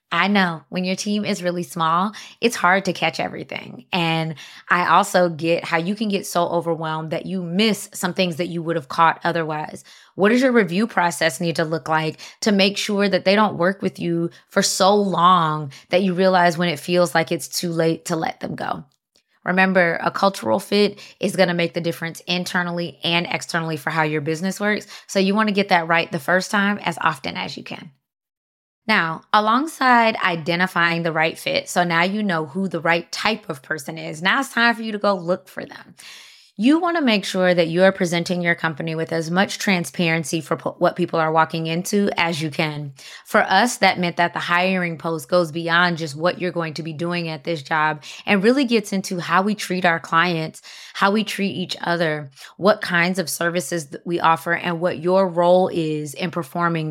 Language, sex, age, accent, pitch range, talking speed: English, female, 20-39, American, 165-195 Hz, 210 wpm